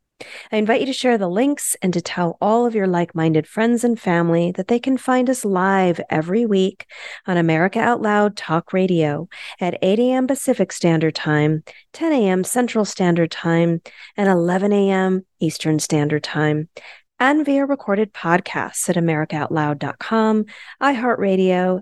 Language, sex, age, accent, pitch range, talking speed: English, female, 40-59, American, 170-225 Hz, 150 wpm